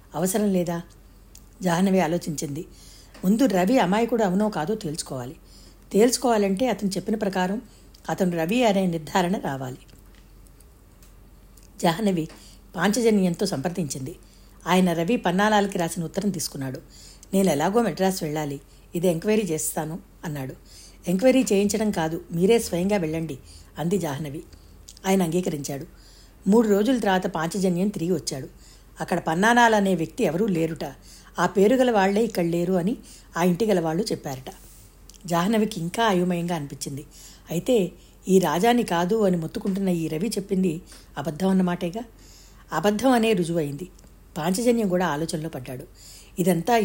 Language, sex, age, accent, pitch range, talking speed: Telugu, female, 60-79, native, 160-205 Hz, 115 wpm